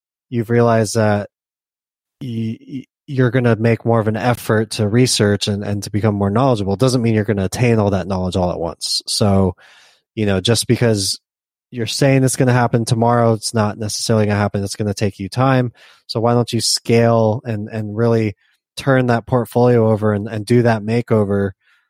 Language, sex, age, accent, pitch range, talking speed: English, male, 20-39, American, 105-125 Hz, 205 wpm